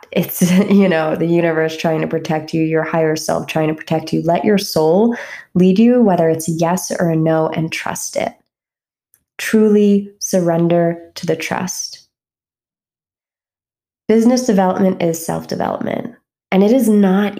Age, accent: 20-39, American